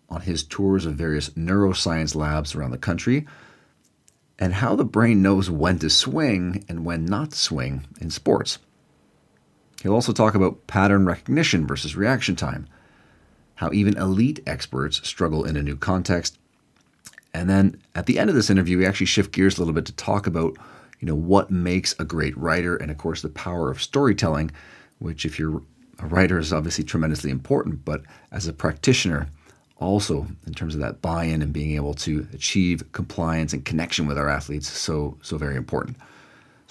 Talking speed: 180 wpm